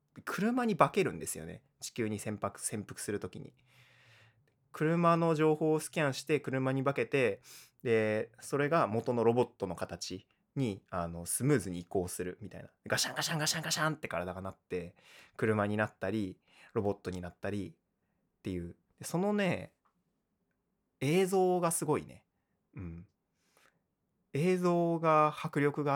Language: Japanese